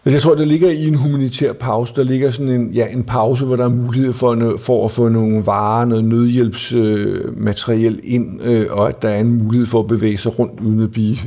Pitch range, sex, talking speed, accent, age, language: 115-140 Hz, male, 245 wpm, native, 50-69, Danish